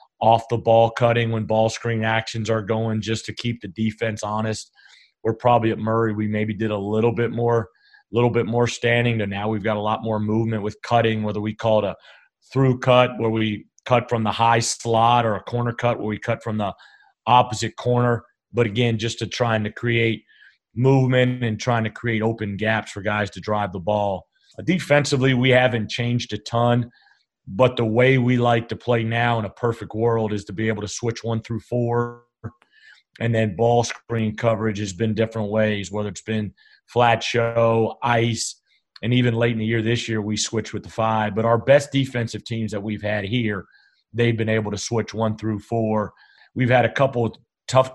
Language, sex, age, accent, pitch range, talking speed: English, male, 30-49, American, 110-120 Hz, 205 wpm